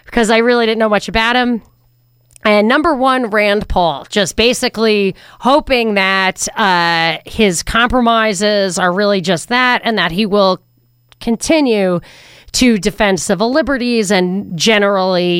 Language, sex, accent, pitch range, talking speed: English, female, American, 195-245 Hz, 135 wpm